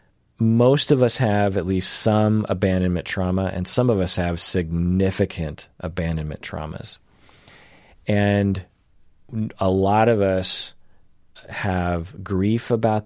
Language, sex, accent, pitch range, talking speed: English, male, American, 90-110 Hz, 115 wpm